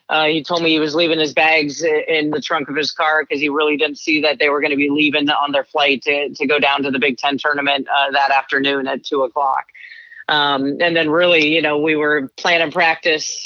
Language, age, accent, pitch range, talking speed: English, 30-49, American, 140-160 Hz, 245 wpm